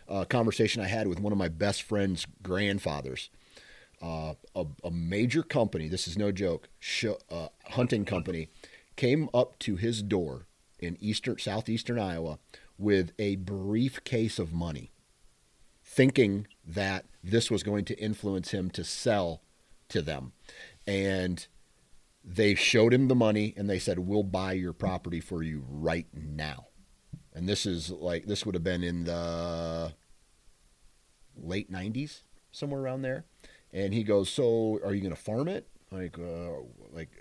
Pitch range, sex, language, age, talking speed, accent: 85-110 Hz, male, English, 40-59, 155 wpm, American